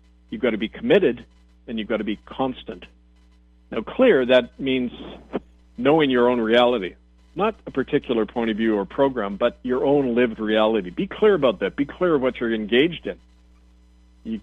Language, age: English, 40-59